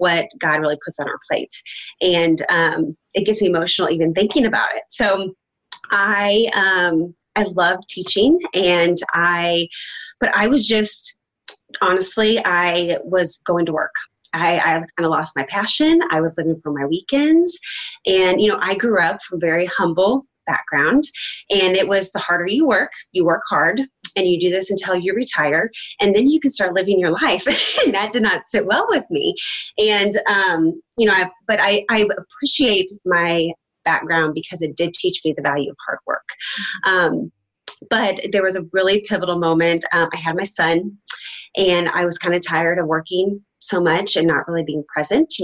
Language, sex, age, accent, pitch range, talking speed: English, female, 20-39, American, 170-210 Hz, 185 wpm